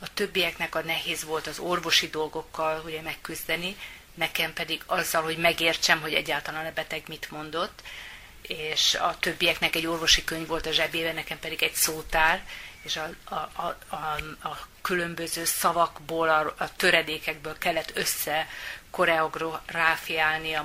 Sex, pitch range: female, 155-175 Hz